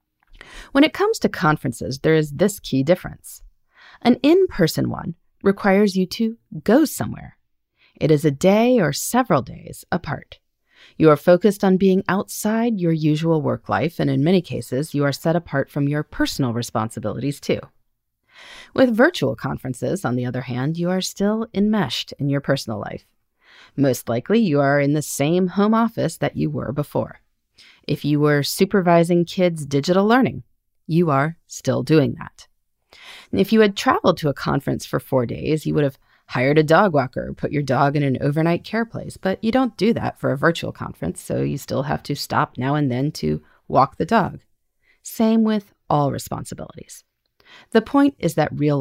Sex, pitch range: female, 140-215 Hz